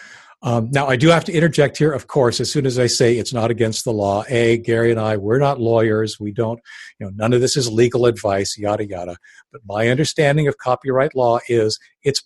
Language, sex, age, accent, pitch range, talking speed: English, male, 50-69, American, 110-150 Hz, 230 wpm